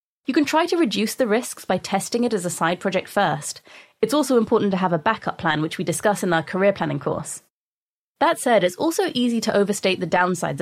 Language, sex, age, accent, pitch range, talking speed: English, female, 20-39, British, 175-240 Hz, 225 wpm